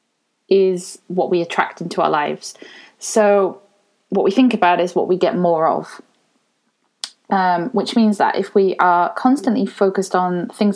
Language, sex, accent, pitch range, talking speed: English, female, British, 185-225 Hz, 160 wpm